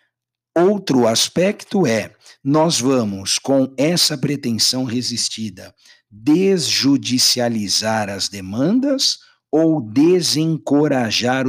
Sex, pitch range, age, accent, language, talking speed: male, 115-155 Hz, 60-79, Brazilian, Portuguese, 75 wpm